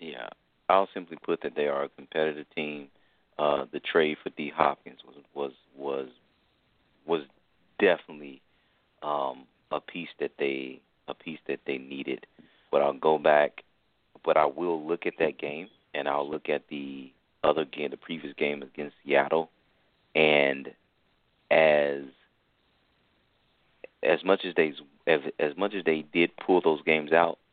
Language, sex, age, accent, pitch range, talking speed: English, male, 40-59, American, 70-90 Hz, 155 wpm